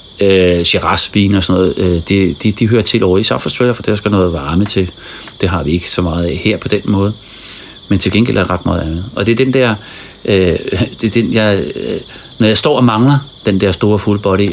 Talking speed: 240 wpm